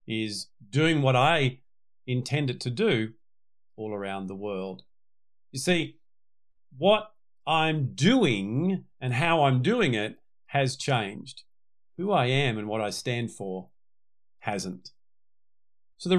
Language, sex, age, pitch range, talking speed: English, male, 50-69, 115-165 Hz, 125 wpm